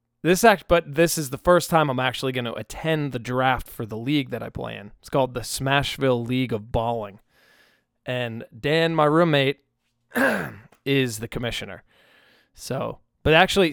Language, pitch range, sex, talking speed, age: English, 115-140 Hz, male, 170 wpm, 20-39